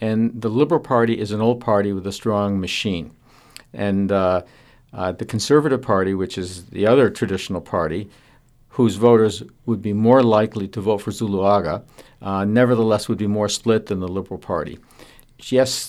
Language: English